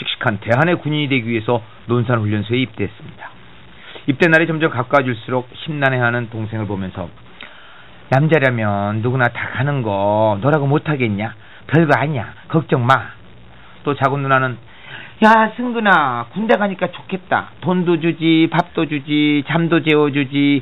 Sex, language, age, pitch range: male, Korean, 40-59, 110-155 Hz